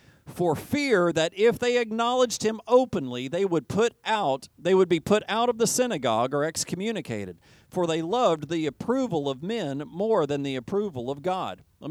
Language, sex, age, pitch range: English, male, 40-59, 155-235 Hz